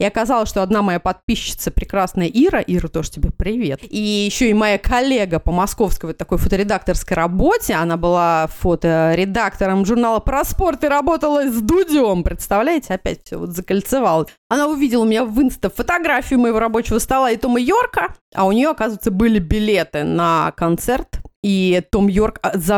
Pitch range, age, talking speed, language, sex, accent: 205-295 Hz, 30-49, 165 wpm, Russian, female, native